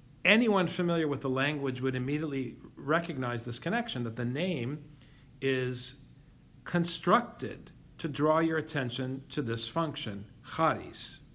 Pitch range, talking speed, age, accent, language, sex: 130-175 Hz, 120 wpm, 50-69, American, English, male